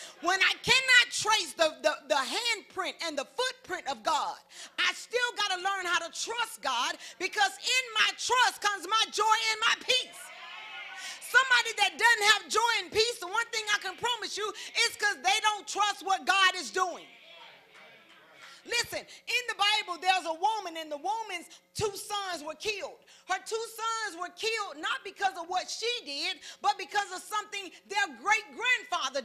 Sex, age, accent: female, 40-59, American